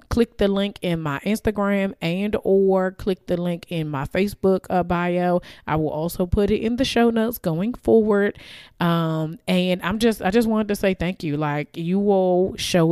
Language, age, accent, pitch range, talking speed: English, 30-49, American, 155-195 Hz, 195 wpm